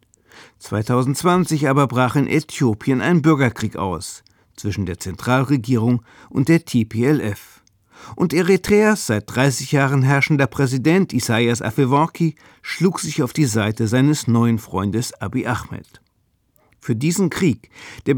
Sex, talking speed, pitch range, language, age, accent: male, 120 wpm, 110-155 Hz, German, 50-69, German